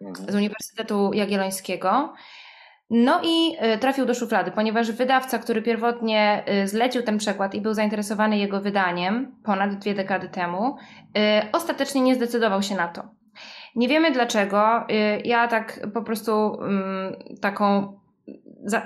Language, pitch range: Polish, 210-245 Hz